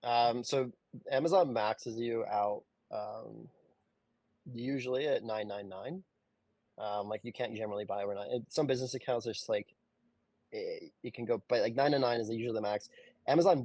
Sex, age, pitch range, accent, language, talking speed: male, 20-39, 105-130 Hz, American, English, 165 wpm